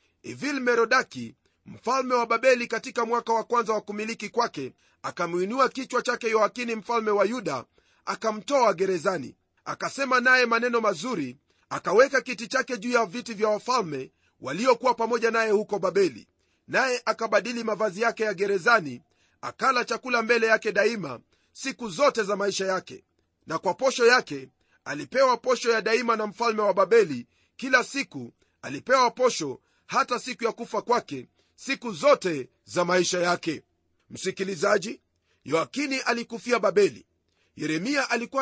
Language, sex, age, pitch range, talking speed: Swahili, male, 40-59, 205-250 Hz, 135 wpm